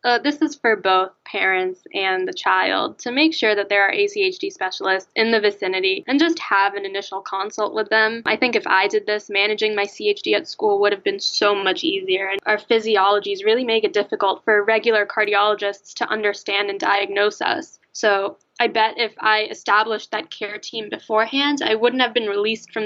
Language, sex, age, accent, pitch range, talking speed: English, female, 10-29, American, 200-260 Hz, 195 wpm